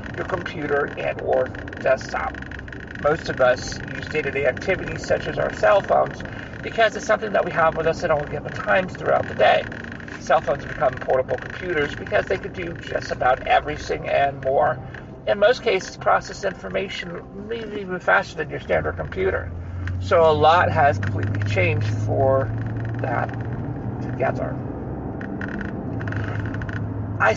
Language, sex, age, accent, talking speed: English, male, 40-59, American, 145 wpm